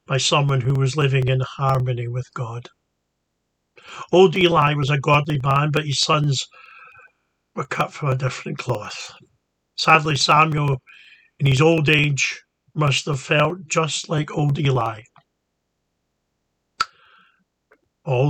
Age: 50-69